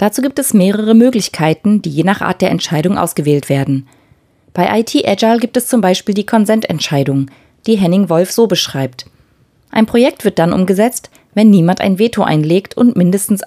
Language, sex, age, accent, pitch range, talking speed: German, female, 20-39, German, 155-220 Hz, 175 wpm